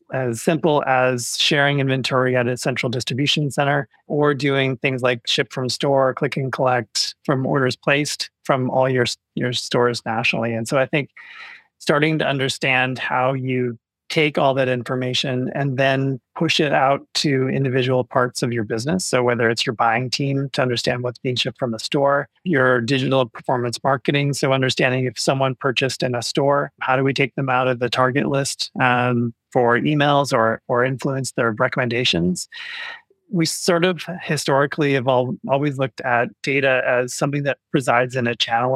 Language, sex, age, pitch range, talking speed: English, male, 30-49, 125-140 Hz, 175 wpm